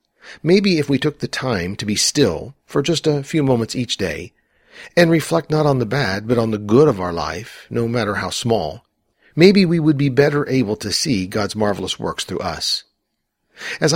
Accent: American